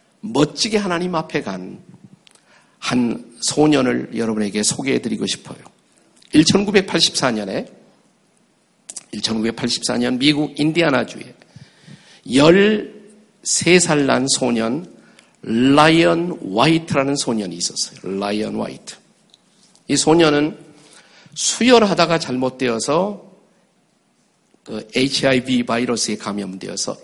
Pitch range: 120-185 Hz